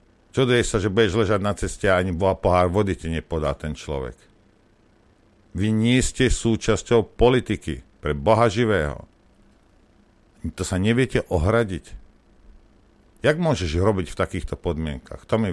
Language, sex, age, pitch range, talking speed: Slovak, male, 50-69, 75-105 Hz, 145 wpm